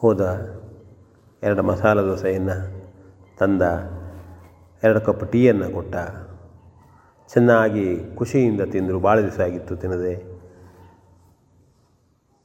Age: 40-59